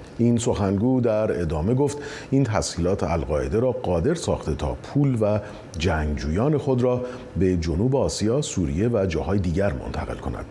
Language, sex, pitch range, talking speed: Persian, male, 85-125 Hz, 150 wpm